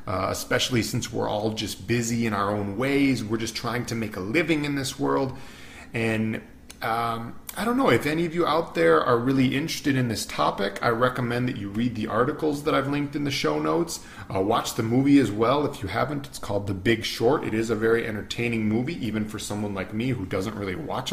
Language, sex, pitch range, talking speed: English, male, 110-145 Hz, 230 wpm